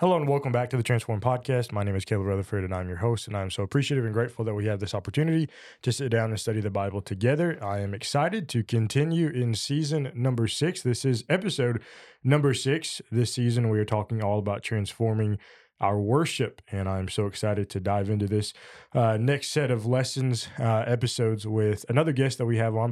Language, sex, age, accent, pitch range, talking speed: English, male, 20-39, American, 105-125 Hz, 215 wpm